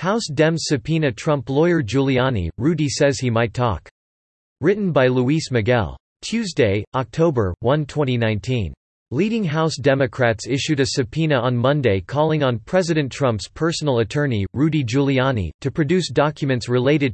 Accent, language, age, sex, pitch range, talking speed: American, English, 40-59, male, 120-150 Hz, 135 wpm